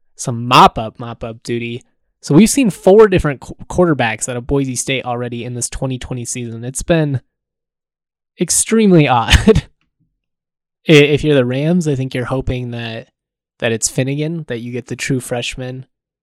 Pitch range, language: 120-155 Hz, English